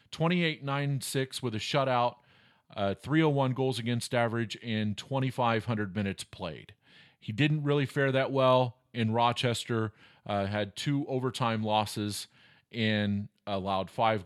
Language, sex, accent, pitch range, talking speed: English, male, American, 110-130 Hz, 120 wpm